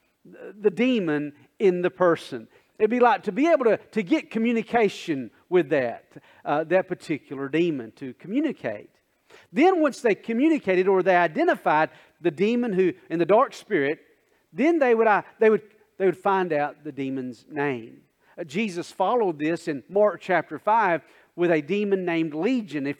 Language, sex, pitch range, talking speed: English, male, 145-210 Hz, 165 wpm